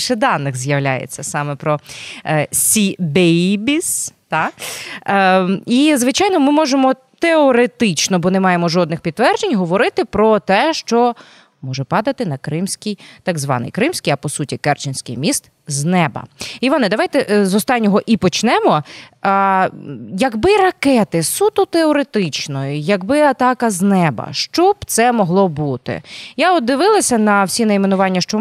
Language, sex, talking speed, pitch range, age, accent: Ukrainian, female, 135 wpm, 170-260 Hz, 20-39, native